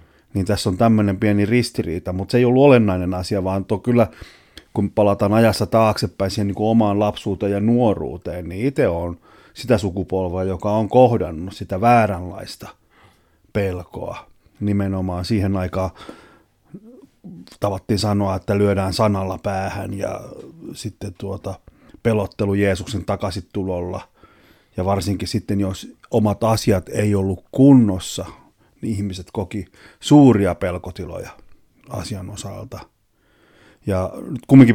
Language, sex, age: Finnish, male, 30-49